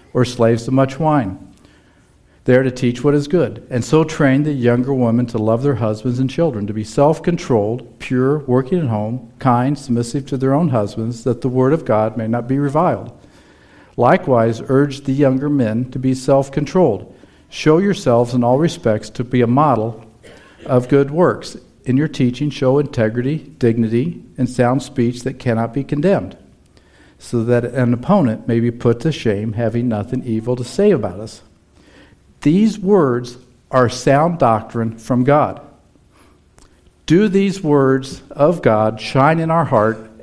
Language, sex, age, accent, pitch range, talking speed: English, male, 50-69, American, 115-145 Hz, 165 wpm